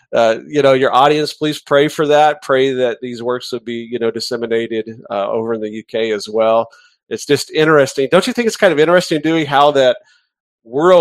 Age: 40-59